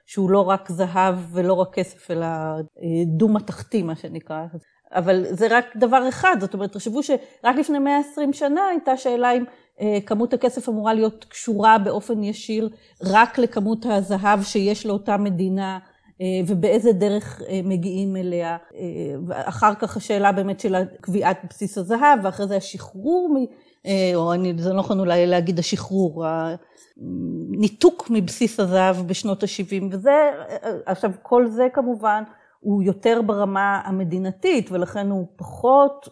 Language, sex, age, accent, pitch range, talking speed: Hebrew, female, 30-49, native, 185-235 Hz, 130 wpm